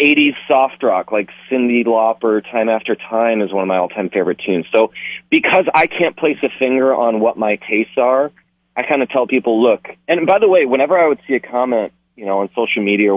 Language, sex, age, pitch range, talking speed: English, male, 30-49, 100-135 Hz, 230 wpm